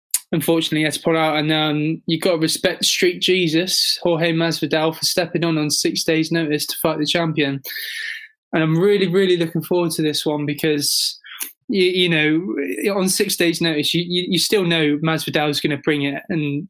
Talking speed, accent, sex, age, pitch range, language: 195 wpm, British, male, 20-39, 155-175 Hz, English